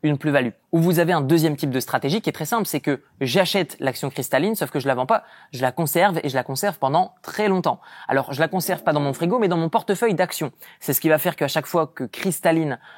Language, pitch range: French, 135-185 Hz